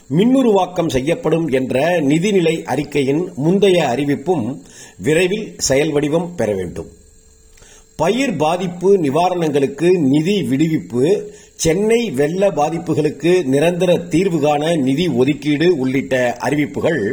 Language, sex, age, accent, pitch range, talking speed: Tamil, male, 50-69, native, 135-185 Hz, 90 wpm